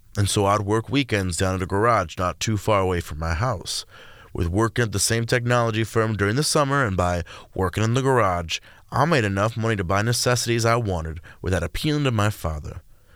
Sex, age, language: male, 30-49, English